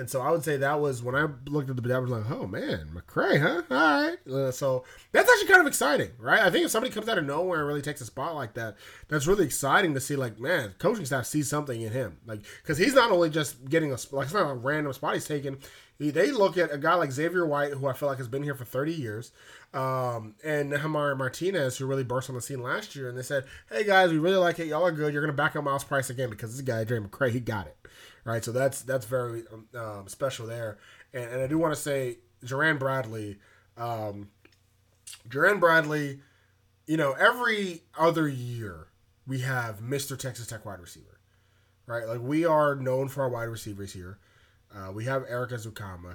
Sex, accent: male, American